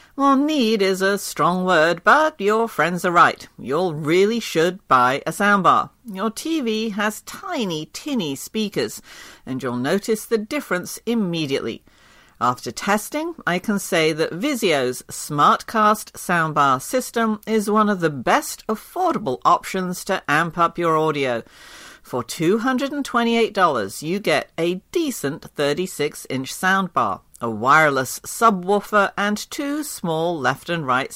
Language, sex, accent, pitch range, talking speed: English, female, British, 155-230 Hz, 130 wpm